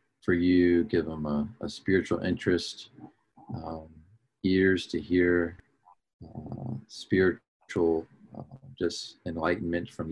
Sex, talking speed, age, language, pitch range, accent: male, 105 wpm, 40-59, English, 80-90 Hz, American